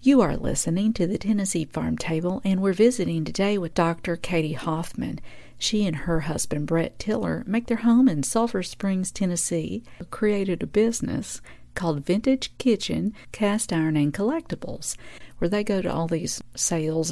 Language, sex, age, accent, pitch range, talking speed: English, female, 50-69, American, 155-215 Hz, 160 wpm